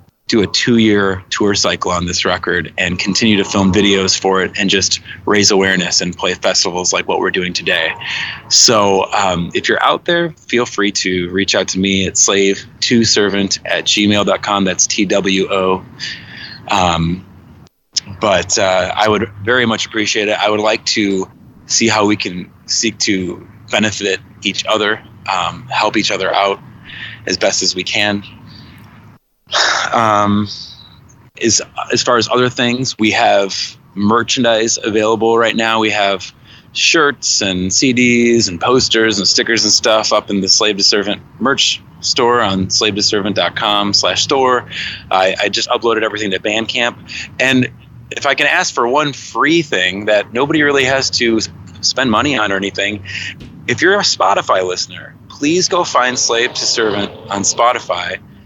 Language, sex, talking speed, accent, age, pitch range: English, male, 155 wpm, American, 20-39, 95-115 Hz